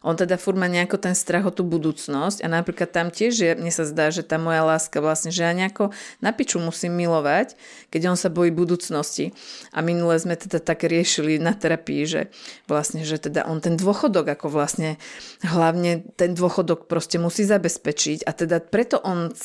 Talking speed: 190 wpm